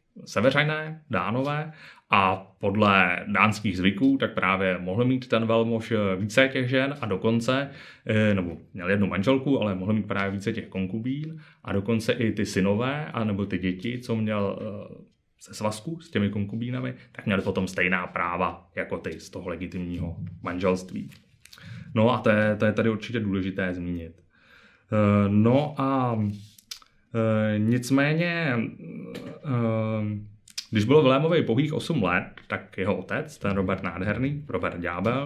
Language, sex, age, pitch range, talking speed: Czech, male, 20-39, 95-130 Hz, 145 wpm